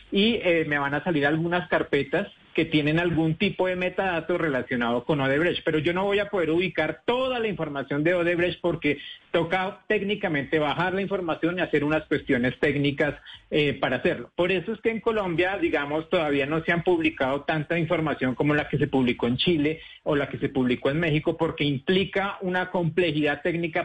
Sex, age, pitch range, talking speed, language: male, 40-59, 150-180 Hz, 190 wpm, Spanish